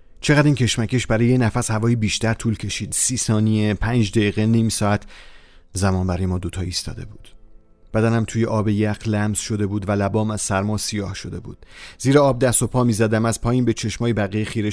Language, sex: Persian, male